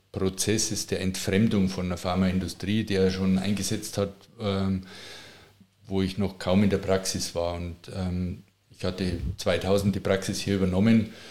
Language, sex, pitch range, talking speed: German, male, 95-105 Hz, 145 wpm